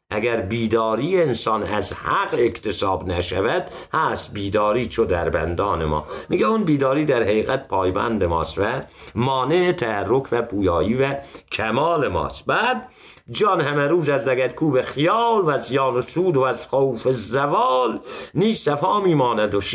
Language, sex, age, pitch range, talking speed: Persian, male, 60-79, 95-140 Hz, 145 wpm